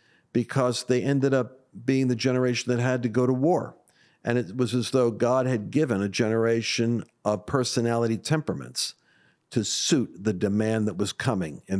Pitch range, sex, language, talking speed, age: 120-160 Hz, male, English, 175 wpm, 50-69